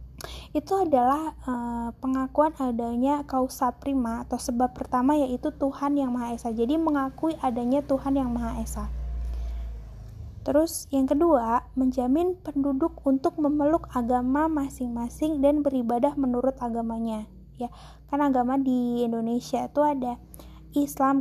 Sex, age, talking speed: female, 20-39, 120 wpm